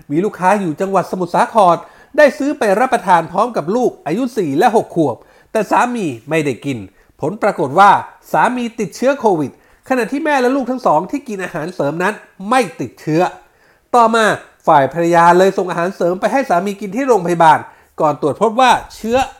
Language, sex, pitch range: Thai, male, 170-250 Hz